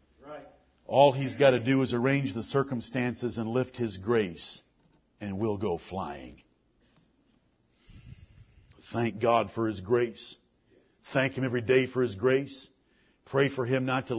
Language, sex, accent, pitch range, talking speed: English, male, American, 110-145 Hz, 145 wpm